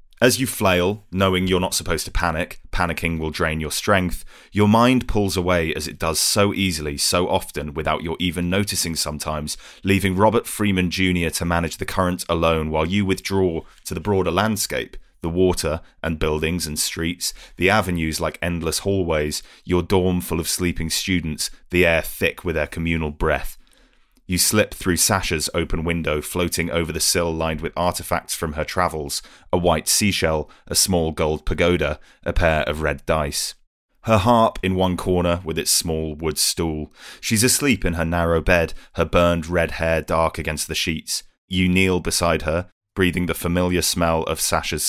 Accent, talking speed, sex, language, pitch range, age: British, 175 wpm, male, English, 80-95 Hz, 30-49